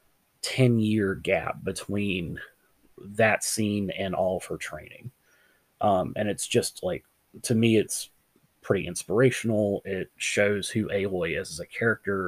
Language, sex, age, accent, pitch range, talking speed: English, male, 30-49, American, 95-120 Hz, 135 wpm